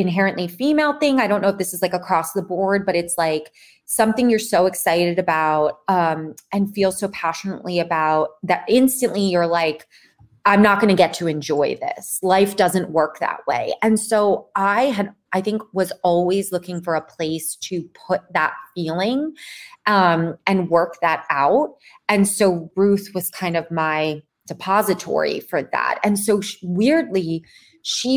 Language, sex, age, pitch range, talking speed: English, female, 20-39, 165-200 Hz, 170 wpm